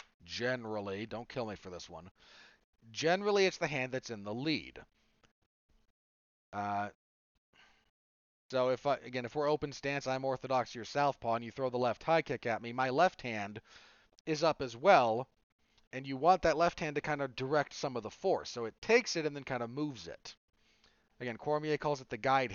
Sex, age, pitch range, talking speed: male, 30-49, 115-160 Hz, 200 wpm